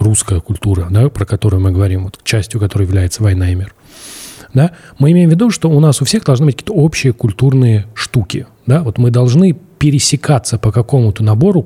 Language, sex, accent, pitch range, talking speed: Russian, male, native, 105-135 Hz, 185 wpm